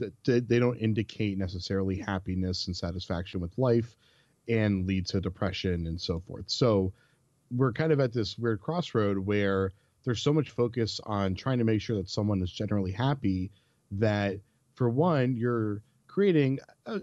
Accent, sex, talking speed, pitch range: American, male, 160 wpm, 95-125 Hz